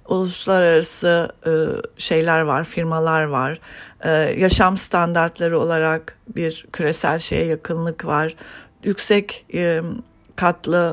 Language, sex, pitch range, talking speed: English, female, 160-205 Hz, 100 wpm